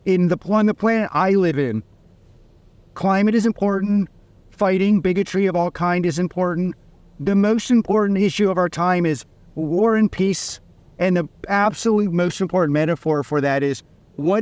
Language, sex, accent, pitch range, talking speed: English, male, American, 165-200 Hz, 155 wpm